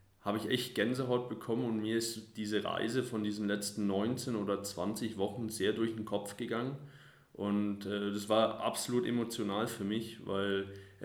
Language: German